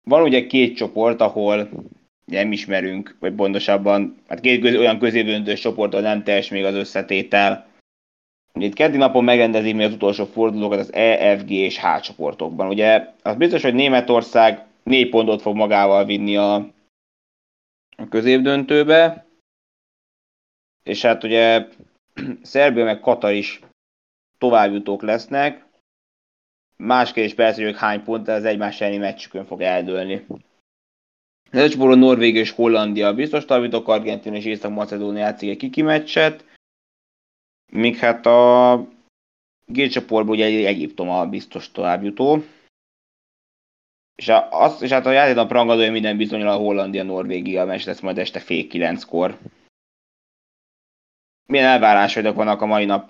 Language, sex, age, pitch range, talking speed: Hungarian, male, 20-39, 100-115 Hz, 130 wpm